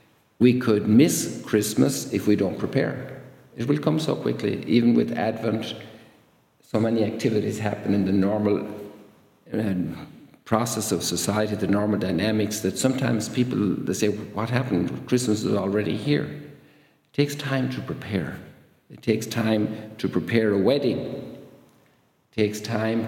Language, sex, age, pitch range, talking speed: English, male, 50-69, 105-125 Hz, 145 wpm